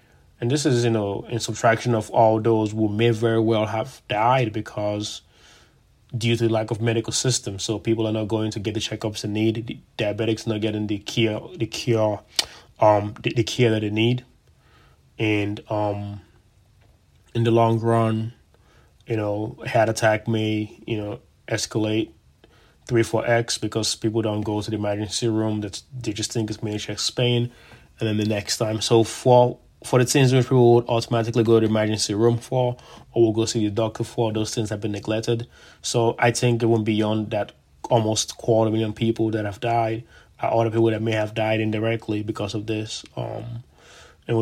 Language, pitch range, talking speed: English, 105-115 Hz, 195 wpm